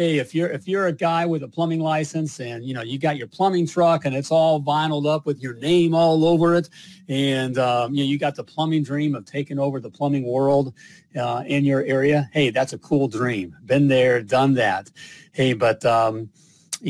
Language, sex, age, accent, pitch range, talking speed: English, male, 40-59, American, 120-155 Hz, 215 wpm